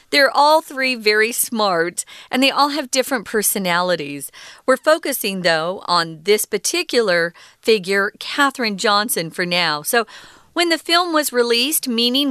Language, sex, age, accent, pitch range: Chinese, female, 40-59, American, 185-255 Hz